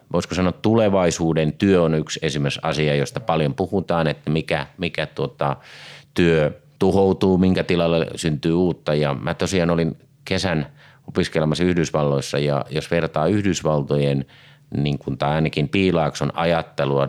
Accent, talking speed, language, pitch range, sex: native, 135 wpm, Finnish, 75-90 Hz, male